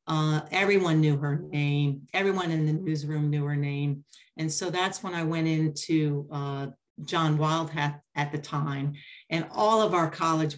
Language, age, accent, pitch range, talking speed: English, 40-59, American, 150-175 Hz, 170 wpm